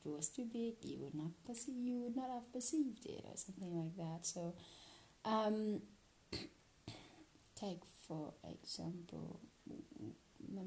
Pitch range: 155-205 Hz